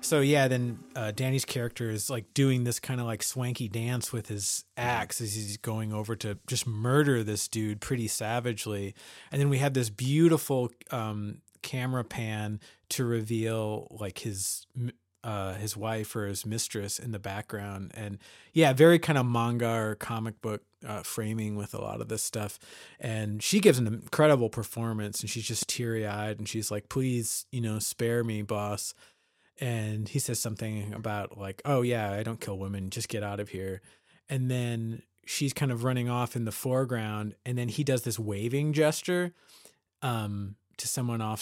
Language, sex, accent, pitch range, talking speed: English, male, American, 105-125 Hz, 180 wpm